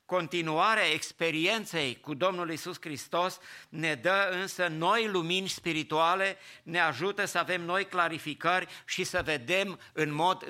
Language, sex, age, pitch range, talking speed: English, male, 50-69, 155-185 Hz, 130 wpm